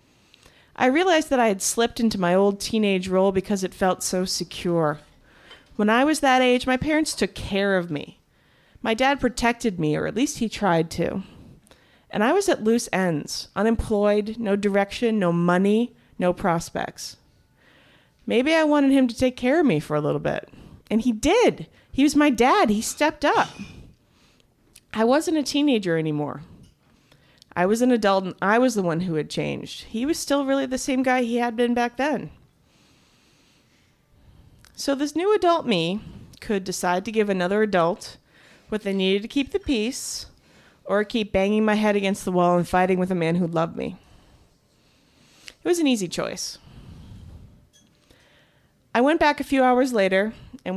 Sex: female